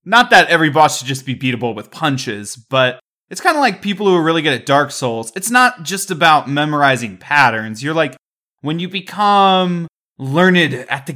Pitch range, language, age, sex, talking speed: 120-160 Hz, English, 20-39, male, 200 wpm